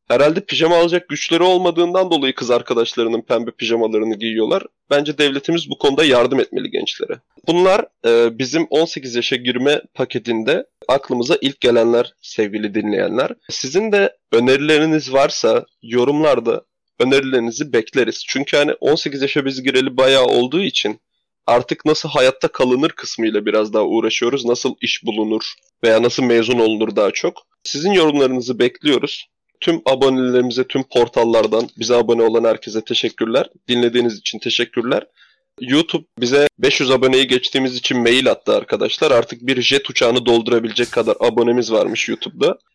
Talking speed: 135 wpm